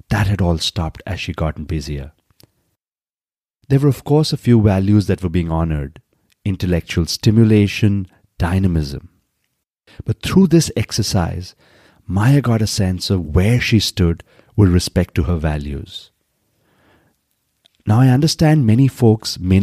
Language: English